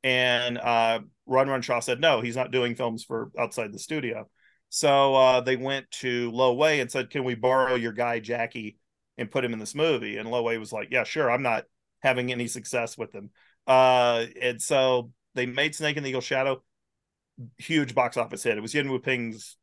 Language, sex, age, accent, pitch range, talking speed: English, male, 40-59, American, 115-130 Hz, 210 wpm